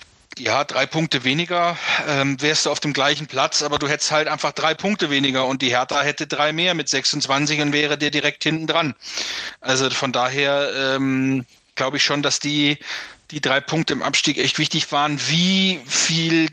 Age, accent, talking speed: 40-59, German, 190 wpm